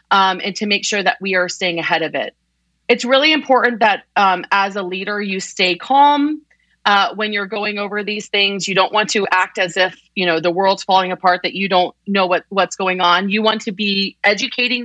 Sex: female